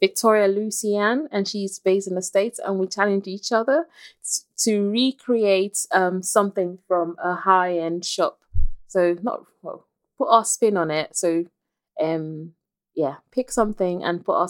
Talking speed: 155 wpm